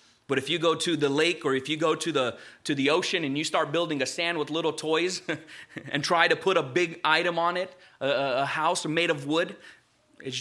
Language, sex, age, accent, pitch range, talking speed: English, male, 30-49, American, 135-185 Hz, 235 wpm